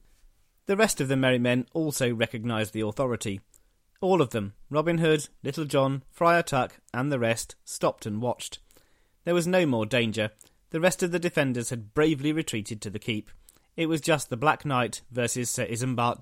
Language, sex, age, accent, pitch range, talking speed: English, male, 40-59, British, 115-160 Hz, 185 wpm